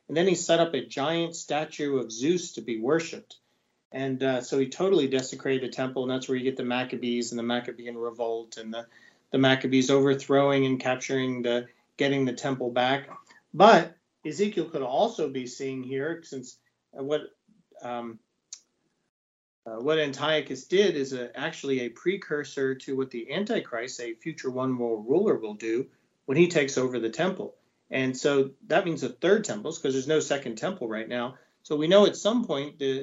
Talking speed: 180 wpm